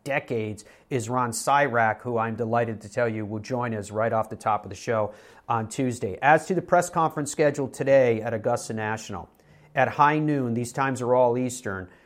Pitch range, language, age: 110-150 Hz, English, 40-59